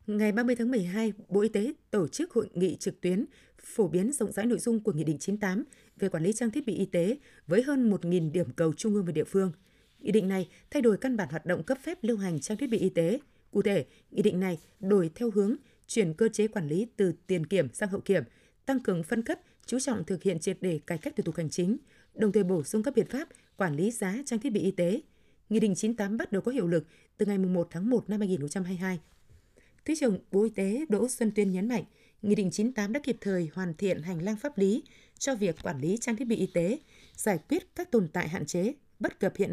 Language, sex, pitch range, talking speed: Vietnamese, female, 185-235 Hz, 250 wpm